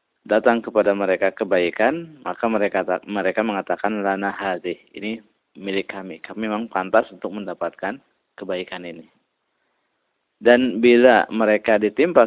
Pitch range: 95-110 Hz